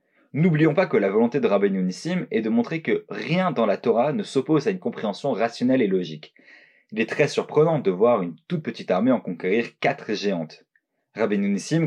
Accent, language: French, French